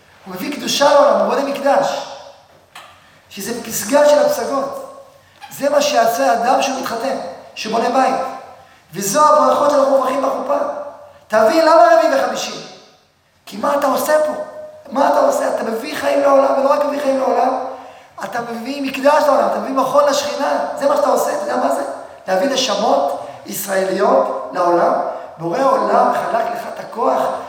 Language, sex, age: Hebrew, male, 30-49